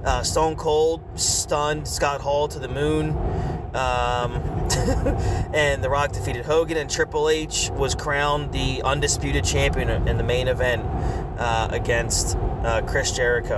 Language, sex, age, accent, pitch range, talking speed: English, male, 30-49, American, 100-135 Hz, 140 wpm